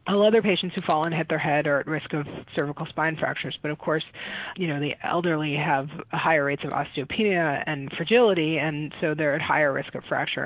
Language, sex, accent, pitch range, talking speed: English, female, American, 150-175 Hz, 220 wpm